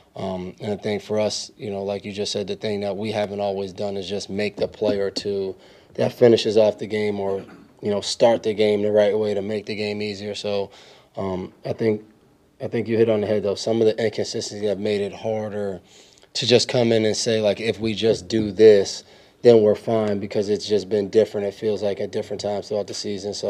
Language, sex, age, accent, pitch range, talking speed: English, male, 20-39, American, 100-110 Hz, 240 wpm